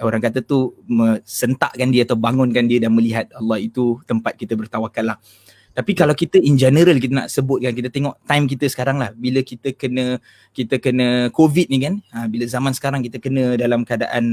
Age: 20-39